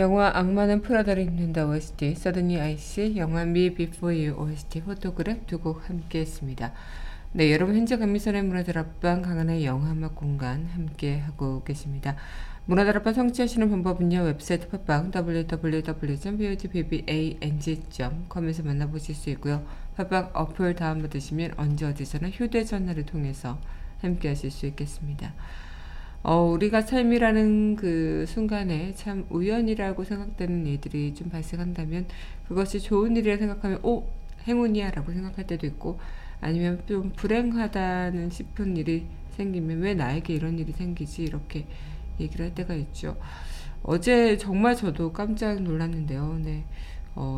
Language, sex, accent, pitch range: Korean, female, native, 150-190 Hz